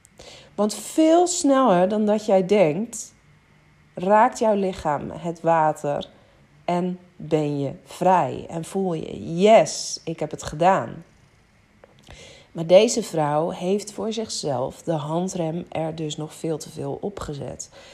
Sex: female